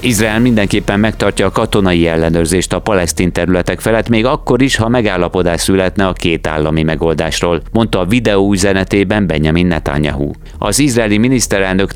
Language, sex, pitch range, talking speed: Hungarian, male, 85-105 Hz, 145 wpm